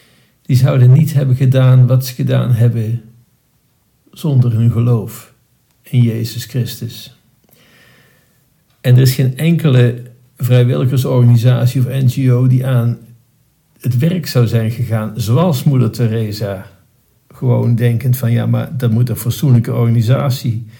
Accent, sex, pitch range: Dutch, male, 120-130 Hz